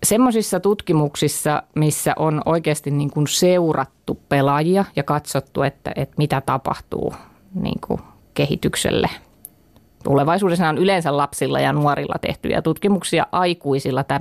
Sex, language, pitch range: female, Finnish, 145-180 Hz